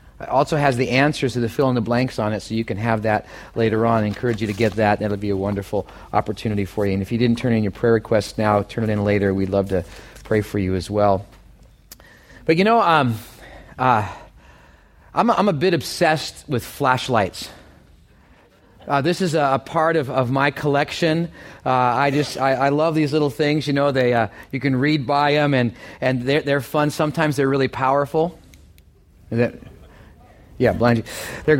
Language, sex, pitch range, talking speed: English, male, 105-155 Hz, 210 wpm